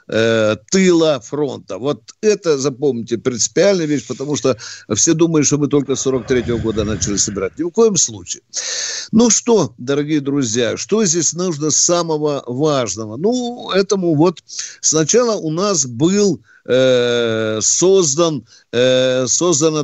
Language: Russian